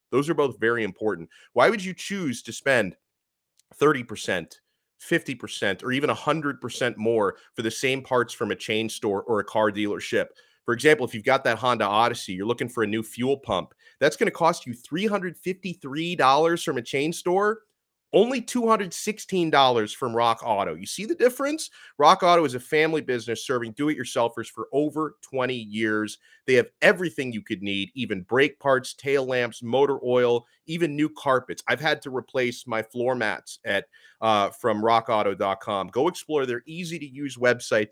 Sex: male